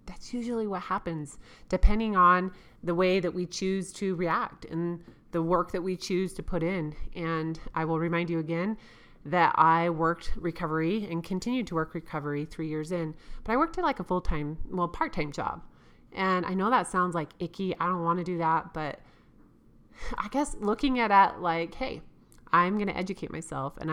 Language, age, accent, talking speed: English, 30-49, American, 195 wpm